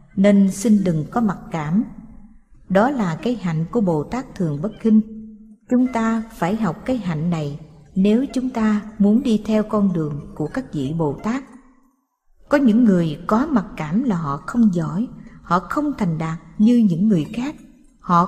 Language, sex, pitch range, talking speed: Vietnamese, female, 175-230 Hz, 180 wpm